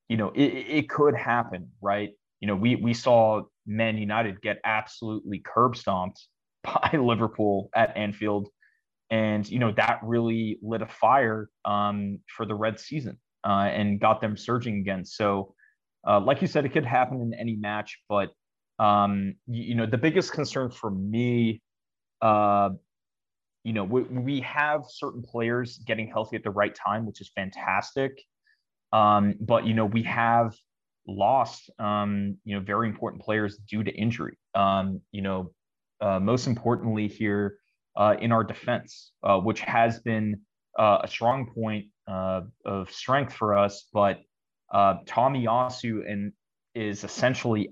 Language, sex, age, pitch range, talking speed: English, male, 20-39, 100-115 Hz, 160 wpm